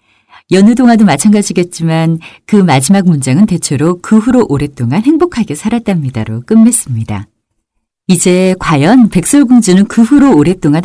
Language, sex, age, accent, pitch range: Korean, female, 40-59, native, 125-205 Hz